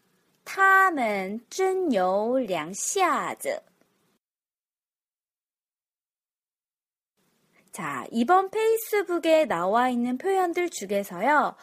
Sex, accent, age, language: female, native, 20-39, Korean